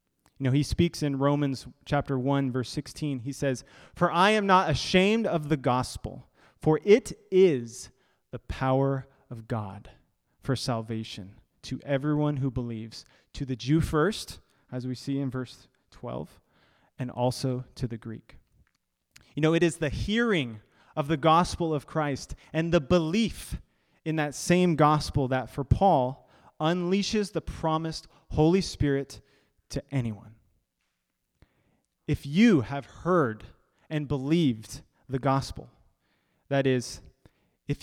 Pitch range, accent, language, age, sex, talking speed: 120-155 Hz, American, English, 30-49, male, 140 wpm